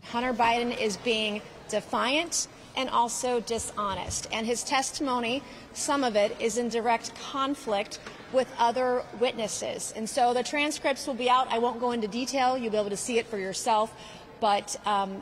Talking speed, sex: 170 wpm, female